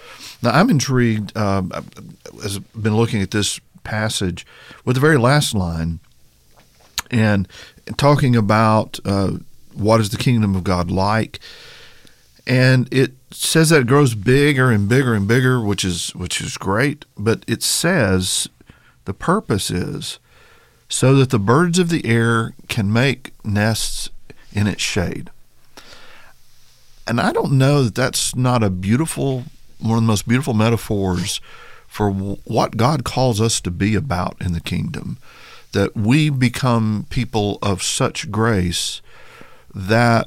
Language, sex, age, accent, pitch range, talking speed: English, male, 50-69, American, 100-130 Hz, 140 wpm